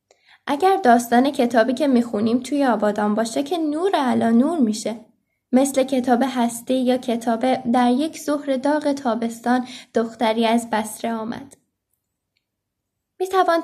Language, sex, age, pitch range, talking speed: Persian, female, 10-29, 230-275 Hz, 125 wpm